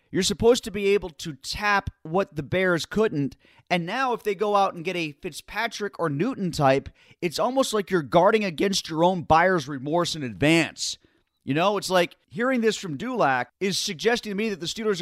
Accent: American